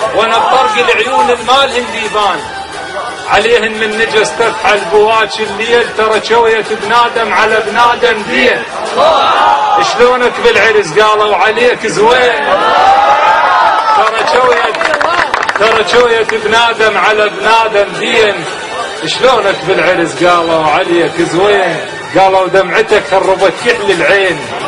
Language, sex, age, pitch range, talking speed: Arabic, male, 40-59, 185-235 Hz, 95 wpm